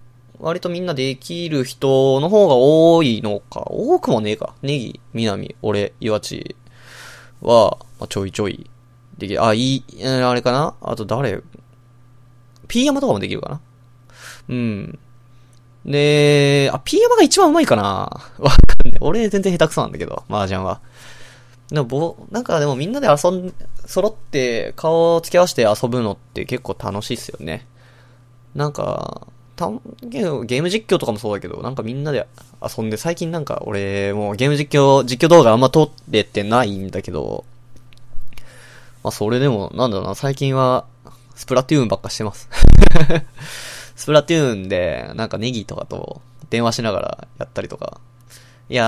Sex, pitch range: male, 115-150 Hz